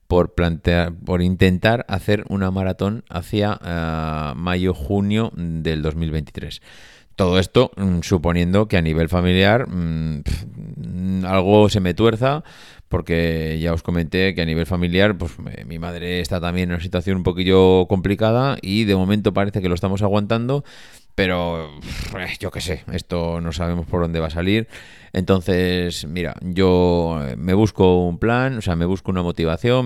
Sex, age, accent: male, 30-49, Spanish